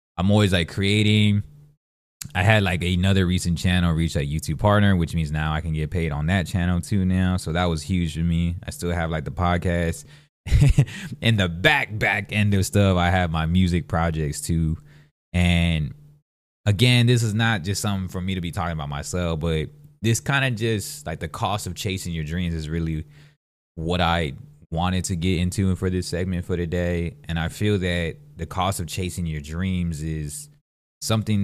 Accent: American